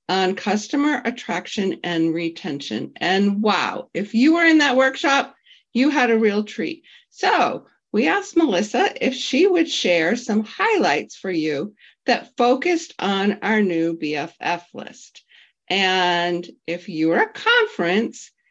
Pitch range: 190-255 Hz